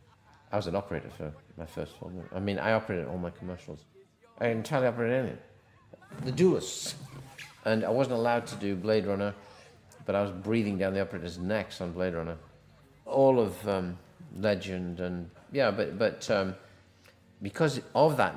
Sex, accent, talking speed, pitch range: male, British, 175 wpm, 90-110 Hz